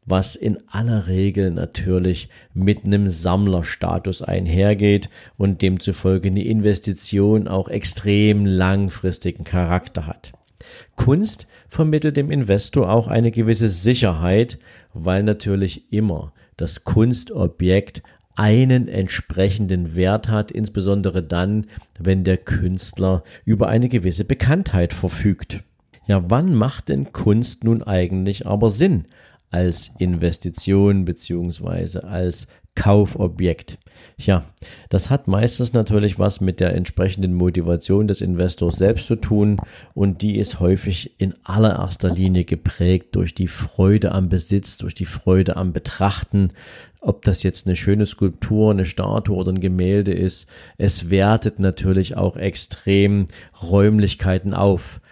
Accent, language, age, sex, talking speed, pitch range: German, German, 50-69, male, 120 wpm, 90-105 Hz